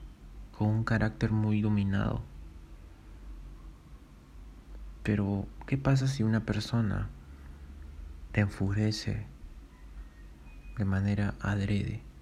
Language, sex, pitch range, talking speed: Spanish, male, 75-110 Hz, 80 wpm